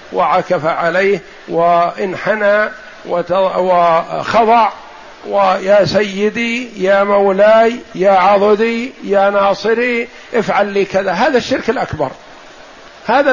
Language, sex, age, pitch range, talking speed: Arabic, male, 50-69, 185-230 Hz, 85 wpm